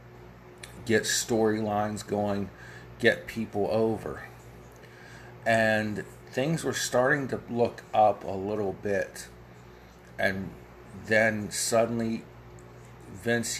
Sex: male